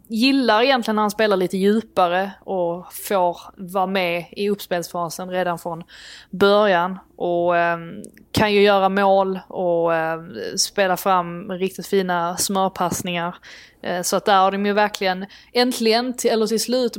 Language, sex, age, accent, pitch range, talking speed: Swedish, female, 20-39, native, 180-210 Hz, 150 wpm